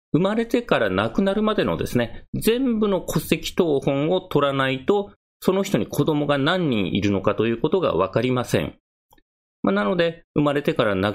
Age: 40-59